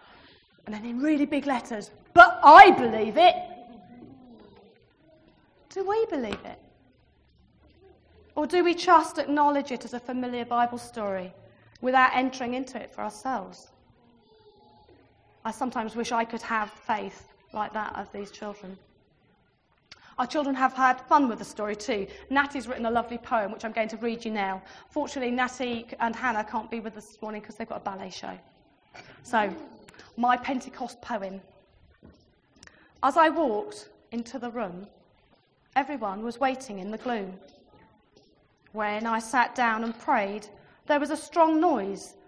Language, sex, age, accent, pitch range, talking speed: English, female, 30-49, British, 215-275 Hz, 150 wpm